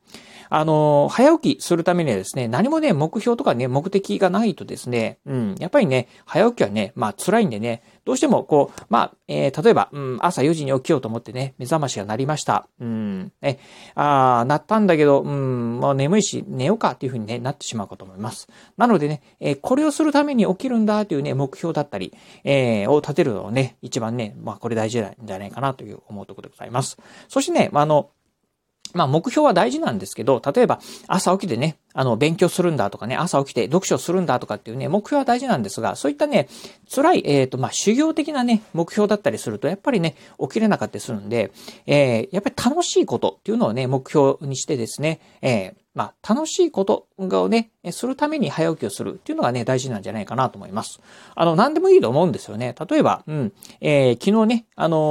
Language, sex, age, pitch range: Japanese, male, 40-59, 125-200 Hz